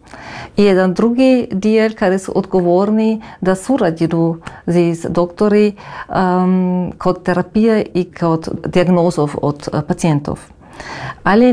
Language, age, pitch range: Croatian, 40-59, 175-205 Hz